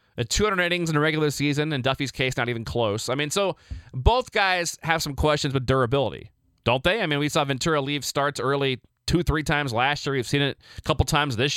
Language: English